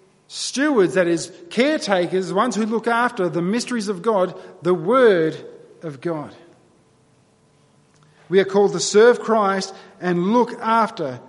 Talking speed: 135 wpm